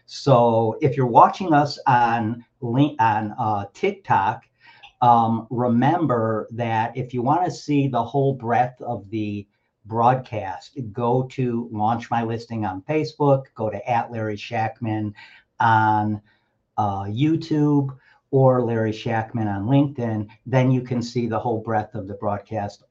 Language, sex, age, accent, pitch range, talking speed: English, male, 50-69, American, 110-130 Hz, 140 wpm